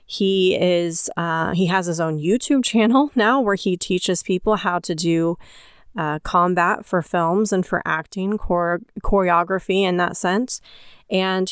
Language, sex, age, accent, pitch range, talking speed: English, female, 30-49, American, 170-205 Hz, 150 wpm